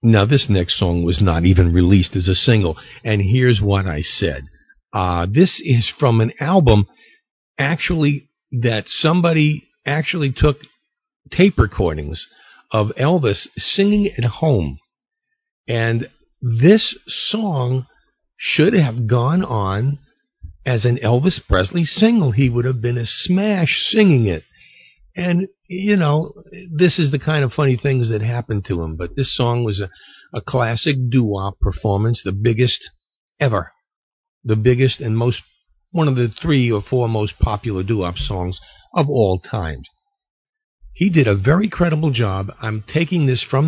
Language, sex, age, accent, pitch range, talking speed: English, male, 50-69, American, 105-160 Hz, 145 wpm